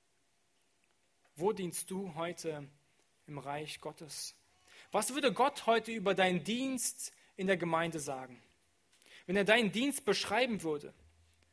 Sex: male